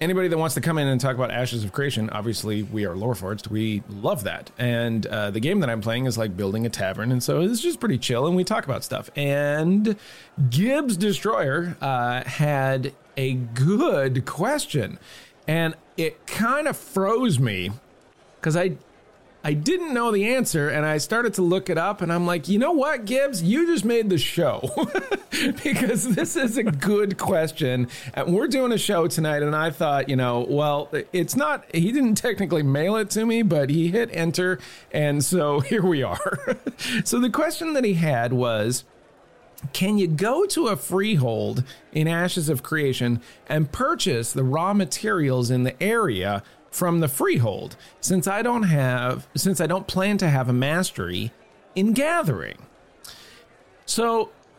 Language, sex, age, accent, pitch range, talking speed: English, male, 40-59, American, 130-200 Hz, 175 wpm